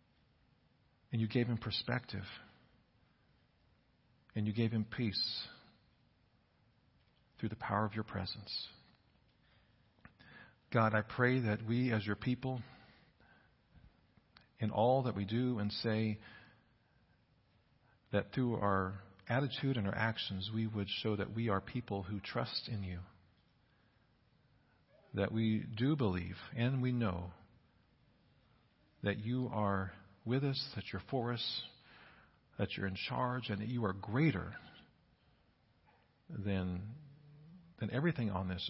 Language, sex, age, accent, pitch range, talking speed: English, male, 50-69, American, 100-125 Hz, 120 wpm